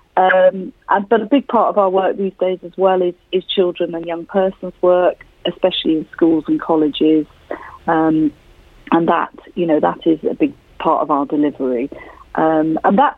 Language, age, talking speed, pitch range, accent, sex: English, 40-59, 180 wpm, 145-215 Hz, British, female